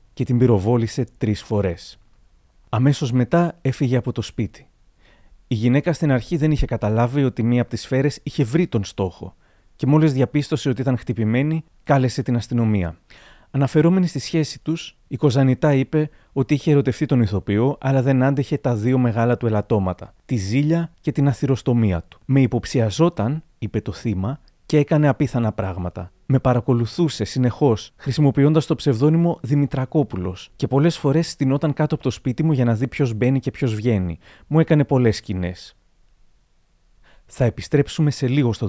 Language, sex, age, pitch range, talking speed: Greek, male, 30-49, 115-145 Hz, 160 wpm